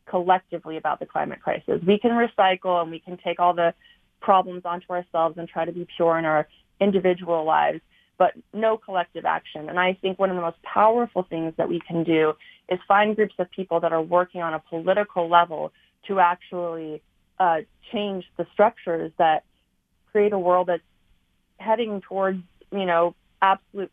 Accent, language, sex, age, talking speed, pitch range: American, English, female, 30-49, 180 wpm, 170-195 Hz